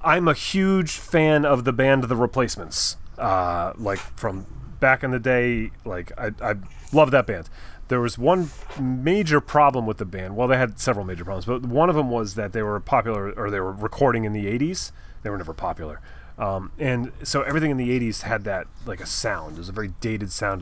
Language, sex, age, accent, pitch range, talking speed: English, male, 30-49, American, 95-125 Hz, 215 wpm